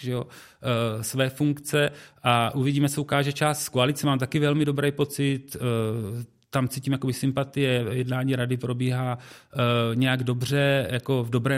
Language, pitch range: Czech, 125-150 Hz